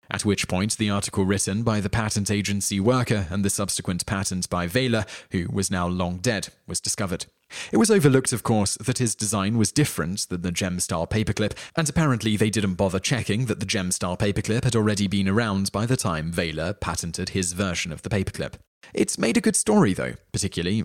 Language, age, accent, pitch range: English, 30-49, British, 95-120 Hz